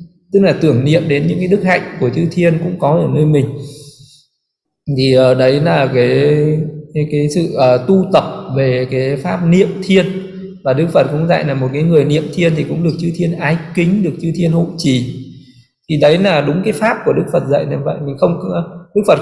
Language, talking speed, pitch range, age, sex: Vietnamese, 225 wpm, 135-170 Hz, 20-39, male